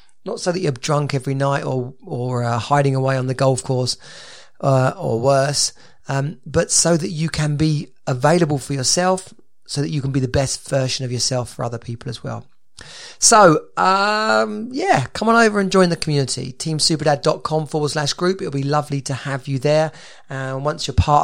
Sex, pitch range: male, 130-155 Hz